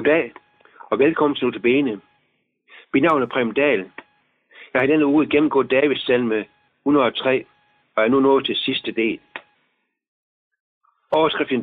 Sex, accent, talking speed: male, native, 125 wpm